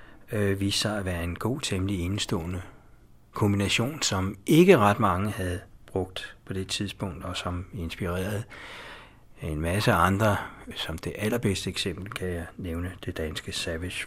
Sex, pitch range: male, 95-115 Hz